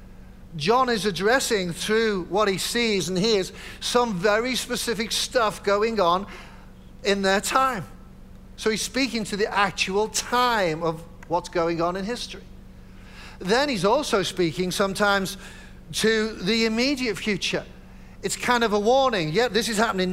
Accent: British